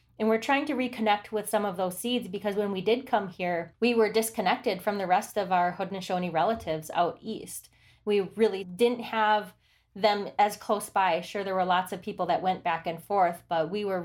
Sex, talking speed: female, 215 wpm